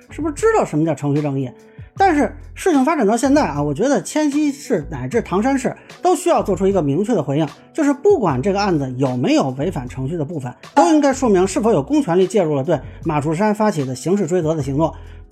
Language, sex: Chinese, male